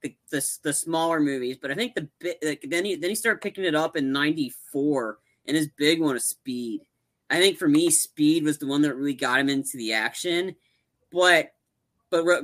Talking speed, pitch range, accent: 210 wpm, 135-175 Hz, American